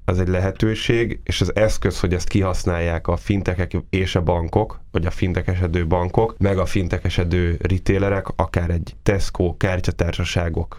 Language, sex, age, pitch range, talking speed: Hungarian, male, 10-29, 85-95 Hz, 145 wpm